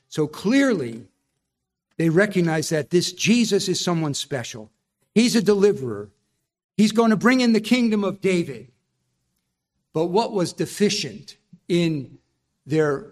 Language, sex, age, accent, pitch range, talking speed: English, male, 50-69, American, 135-185 Hz, 130 wpm